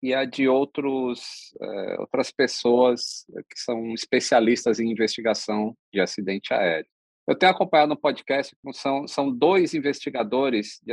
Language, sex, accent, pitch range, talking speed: Portuguese, male, Brazilian, 110-155 Hz, 125 wpm